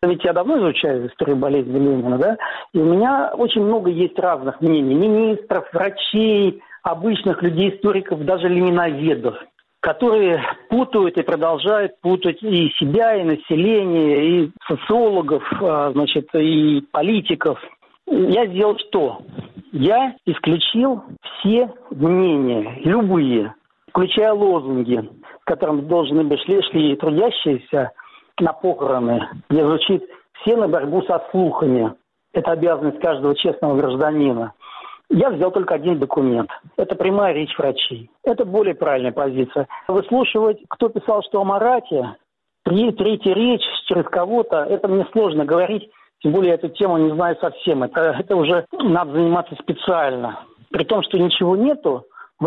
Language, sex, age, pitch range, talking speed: Russian, male, 50-69, 155-210 Hz, 130 wpm